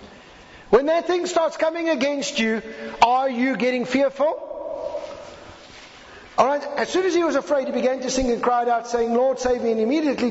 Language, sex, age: English, male, 50-69